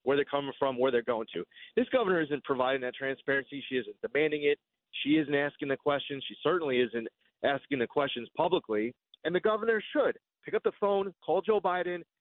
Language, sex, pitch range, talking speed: English, male, 145-195 Hz, 200 wpm